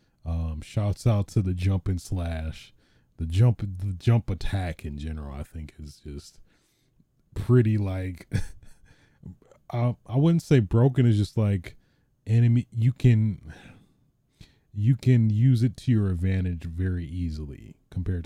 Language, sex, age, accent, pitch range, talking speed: English, male, 30-49, American, 80-100 Hz, 135 wpm